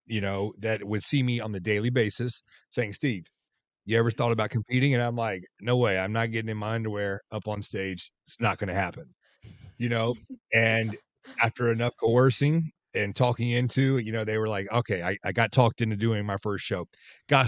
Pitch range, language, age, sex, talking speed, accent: 105-125 Hz, English, 30-49, male, 210 wpm, American